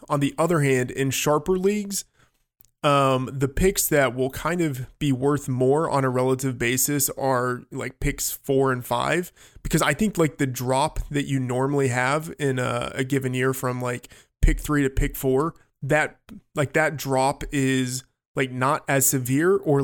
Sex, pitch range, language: male, 125-150 Hz, English